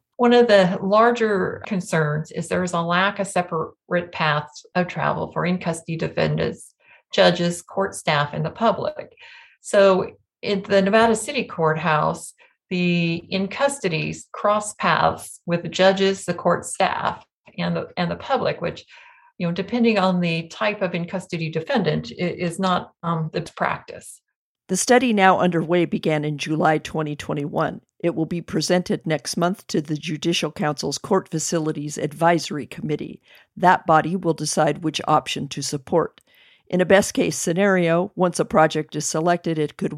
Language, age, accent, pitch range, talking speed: English, 50-69, American, 155-190 Hz, 155 wpm